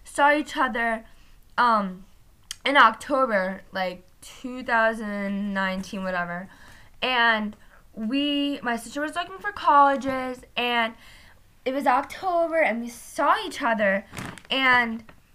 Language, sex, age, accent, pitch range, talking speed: English, female, 10-29, American, 225-310 Hz, 105 wpm